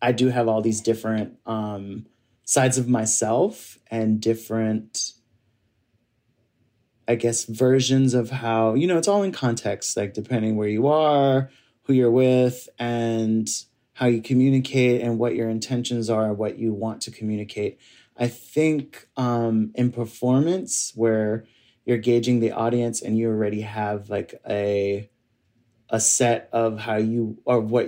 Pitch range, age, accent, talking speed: 110-125 Hz, 30-49, American, 145 wpm